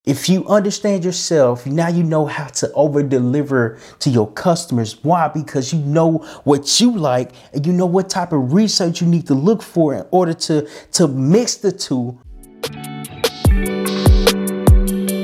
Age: 30-49